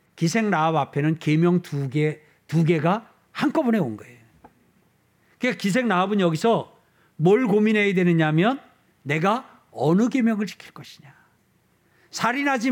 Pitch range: 165-235 Hz